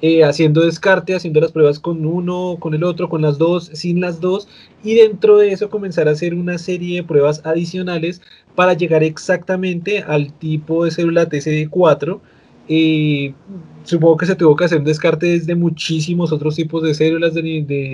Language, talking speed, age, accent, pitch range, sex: Spanish, 175 wpm, 20-39, Colombian, 155-175 Hz, male